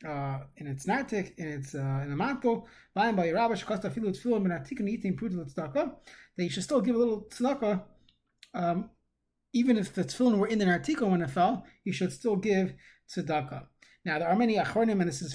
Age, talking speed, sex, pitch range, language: 20-39, 170 wpm, male, 155-210 Hz, English